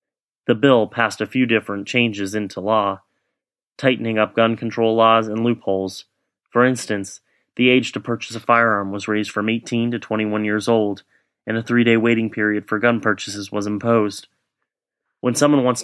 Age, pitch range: 30-49, 105-120 Hz